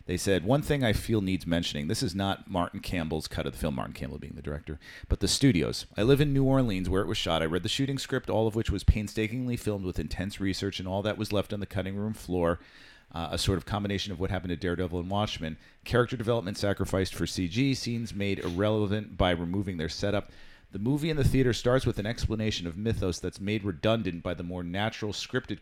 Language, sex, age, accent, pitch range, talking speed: English, male, 40-59, American, 90-115 Hz, 235 wpm